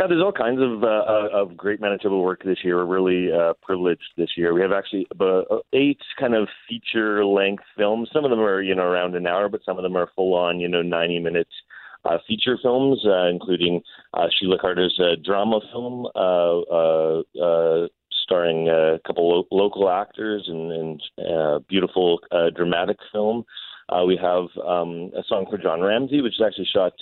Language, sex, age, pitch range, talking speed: English, male, 30-49, 85-105 Hz, 195 wpm